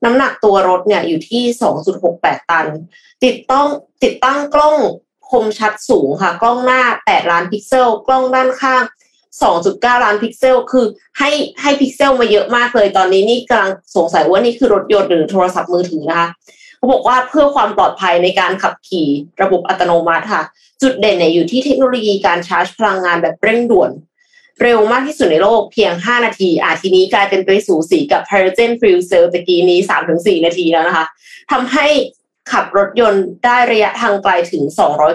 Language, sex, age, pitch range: Thai, female, 20-39, 180-255 Hz